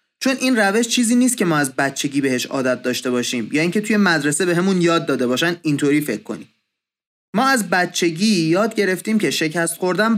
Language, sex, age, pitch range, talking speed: Persian, male, 30-49, 145-205 Hz, 200 wpm